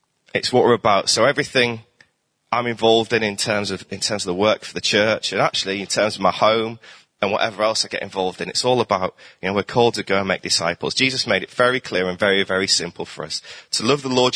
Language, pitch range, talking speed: English, 100-125 Hz, 255 wpm